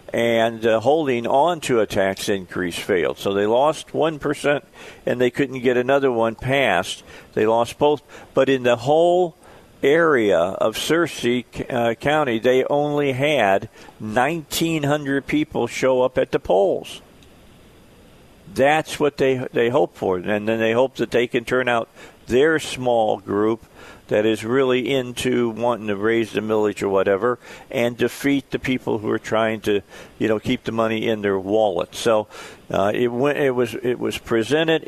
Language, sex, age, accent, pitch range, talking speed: English, male, 50-69, American, 115-145 Hz, 165 wpm